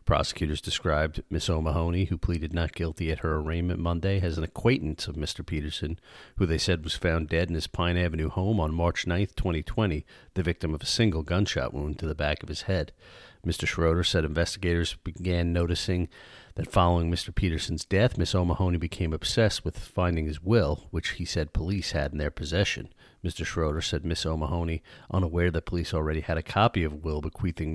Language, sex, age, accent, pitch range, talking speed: English, male, 40-59, American, 80-95 Hz, 190 wpm